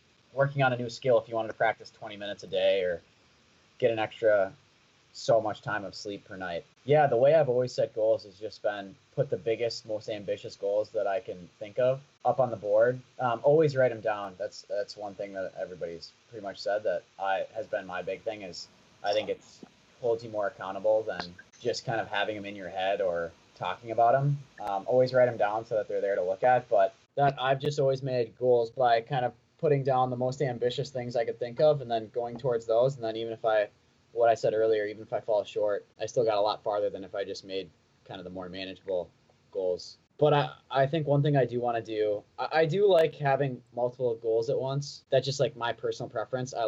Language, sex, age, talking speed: English, male, 20-39, 240 wpm